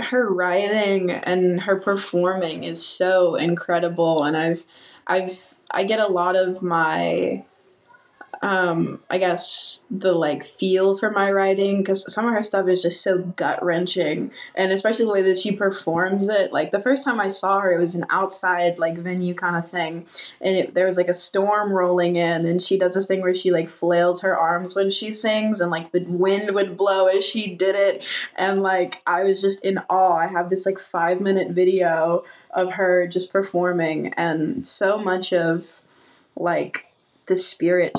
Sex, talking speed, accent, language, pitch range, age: female, 185 wpm, American, English, 175-195 Hz, 20-39